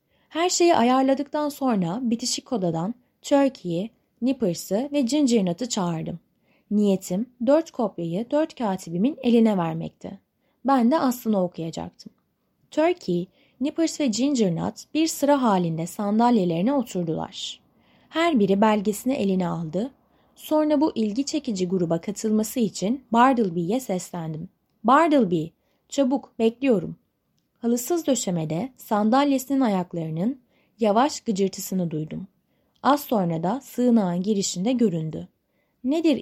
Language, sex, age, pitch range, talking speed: Turkish, female, 20-39, 180-265 Hz, 105 wpm